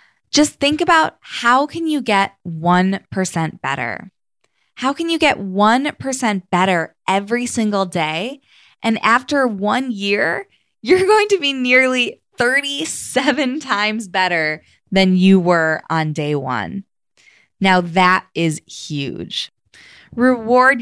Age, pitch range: 20-39, 165-225 Hz